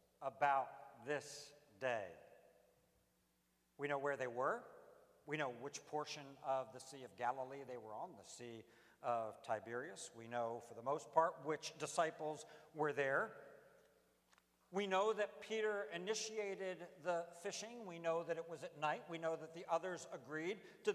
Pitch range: 130-185 Hz